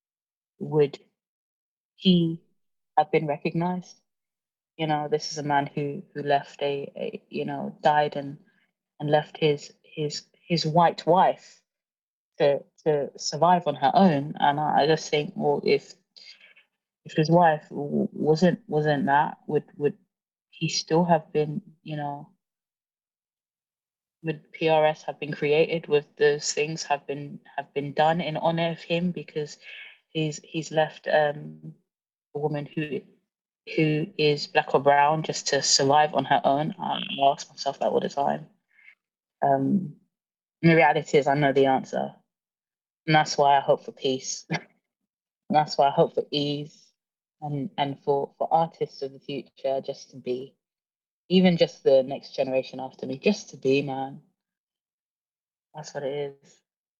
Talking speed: 155 wpm